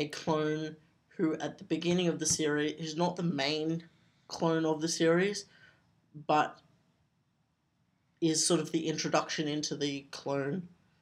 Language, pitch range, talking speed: English, 150-170 Hz, 140 wpm